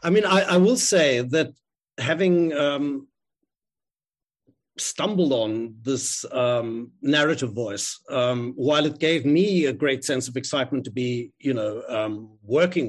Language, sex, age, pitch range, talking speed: English, male, 60-79, 130-165 Hz, 145 wpm